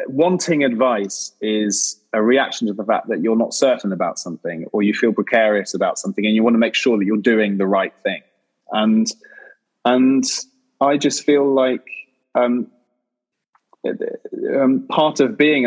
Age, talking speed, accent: 20-39, 165 wpm, British